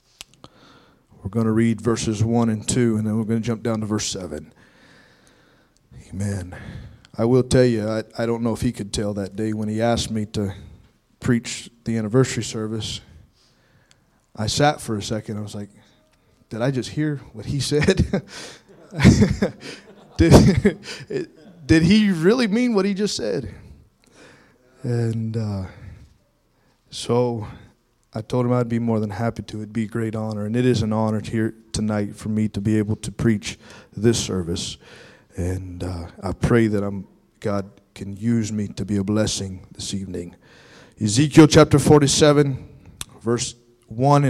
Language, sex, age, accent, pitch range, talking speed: English, male, 20-39, American, 105-130 Hz, 160 wpm